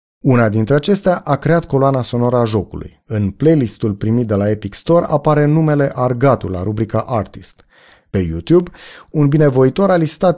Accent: native